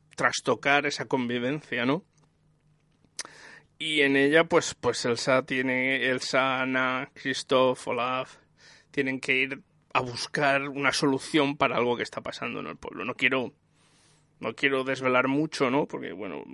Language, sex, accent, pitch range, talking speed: Spanish, male, Spanish, 130-150 Hz, 140 wpm